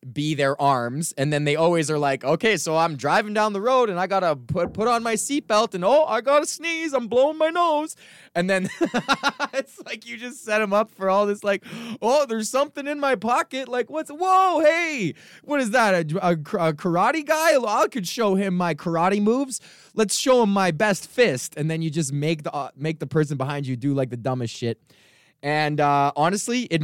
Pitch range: 135-220 Hz